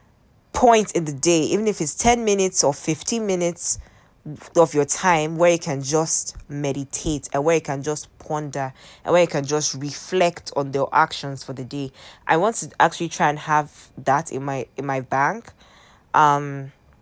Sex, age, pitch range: female, 20-39, 140-175 Hz